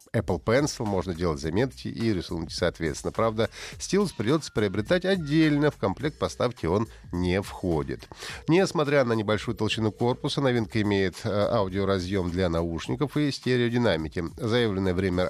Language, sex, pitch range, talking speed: Russian, male, 90-120 Hz, 130 wpm